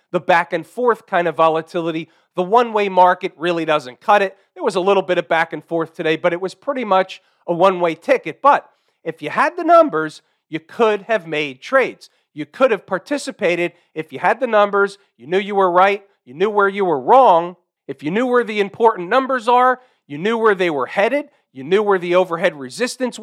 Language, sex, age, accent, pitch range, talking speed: English, male, 40-59, American, 165-215 Hz, 205 wpm